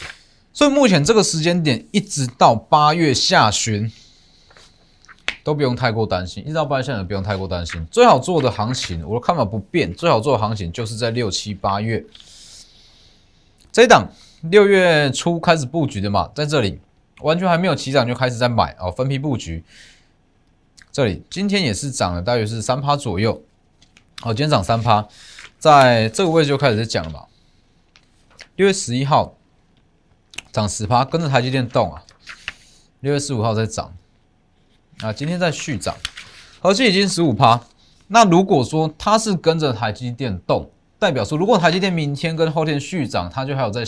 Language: Chinese